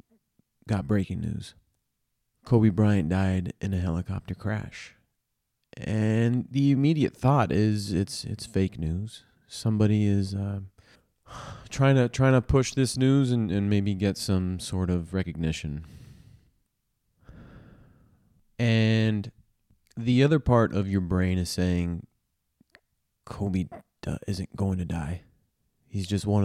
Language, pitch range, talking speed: English, 90-110 Hz, 125 wpm